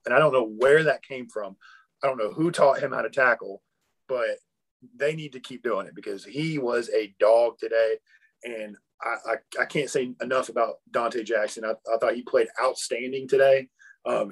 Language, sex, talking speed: English, male, 200 wpm